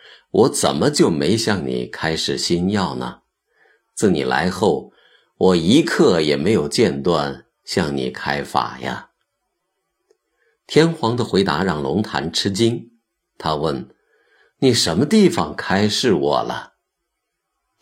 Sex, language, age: male, Chinese, 50-69